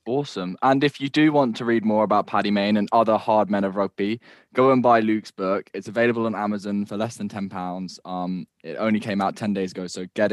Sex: male